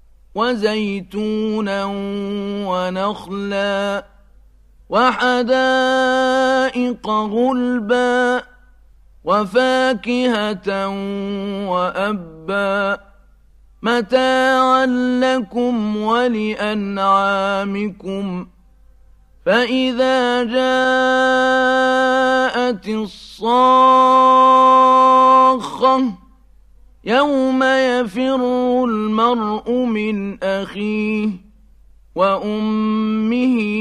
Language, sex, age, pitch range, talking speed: Arabic, male, 40-59, 200-255 Hz, 30 wpm